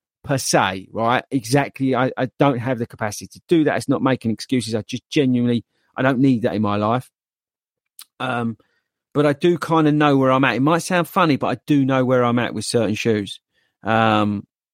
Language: English